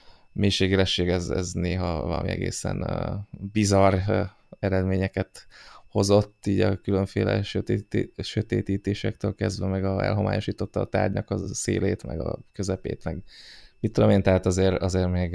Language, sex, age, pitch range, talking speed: Hungarian, male, 20-39, 90-100 Hz, 135 wpm